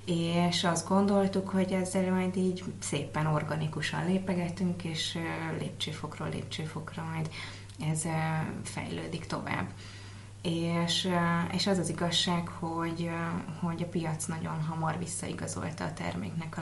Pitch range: 150-170 Hz